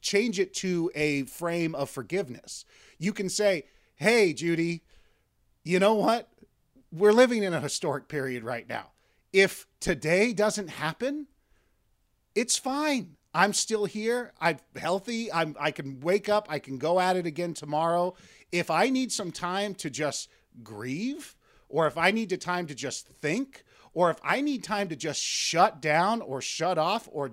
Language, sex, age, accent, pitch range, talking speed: English, male, 40-59, American, 145-195 Hz, 170 wpm